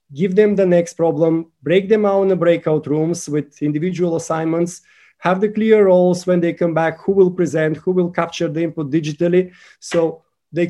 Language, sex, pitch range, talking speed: English, male, 160-195 Hz, 190 wpm